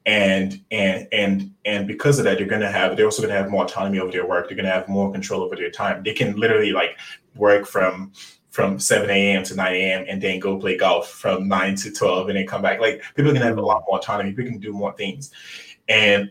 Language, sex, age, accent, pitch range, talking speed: English, male, 20-39, American, 100-120 Hz, 245 wpm